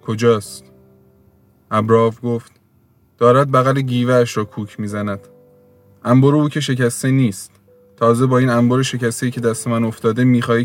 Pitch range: 105-130 Hz